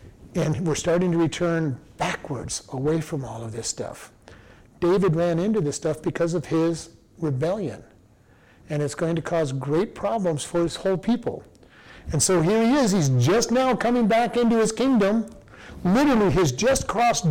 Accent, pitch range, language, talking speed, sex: American, 155-210 Hz, English, 170 wpm, male